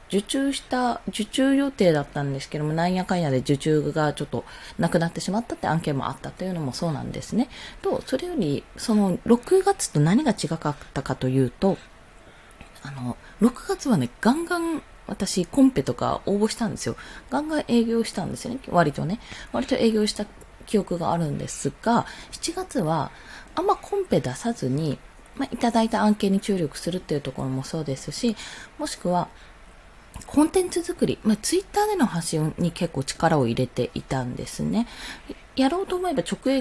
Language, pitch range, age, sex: Japanese, 155-255 Hz, 20-39, female